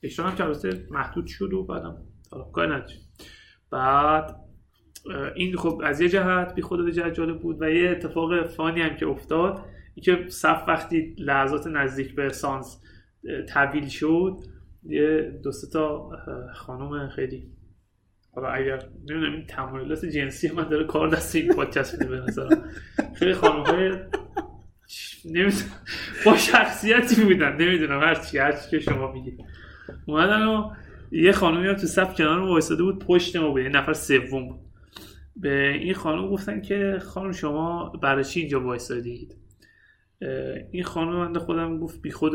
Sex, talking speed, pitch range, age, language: male, 140 wpm, 140-180 Hz, 30-49, Persian